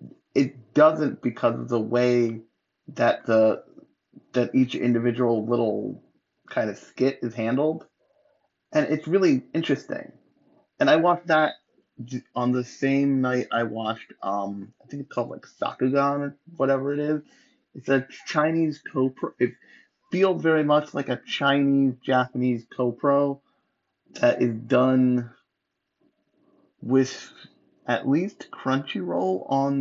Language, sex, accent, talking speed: English, male, American, 125 wpm